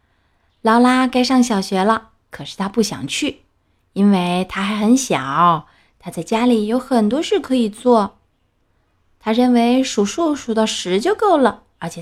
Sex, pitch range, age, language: female, 175-255 Hz, 20-39, Chinese